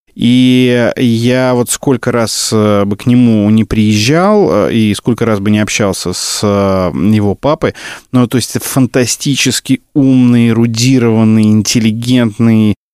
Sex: male